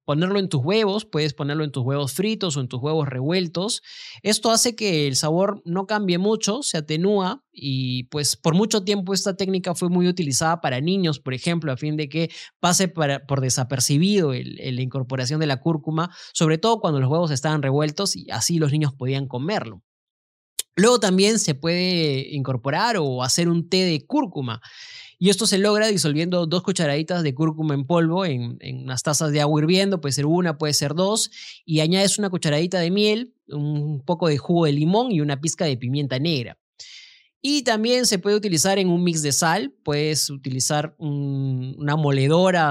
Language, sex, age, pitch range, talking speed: Spanish, male, 20-39, 145-190 Hz, 185 wpm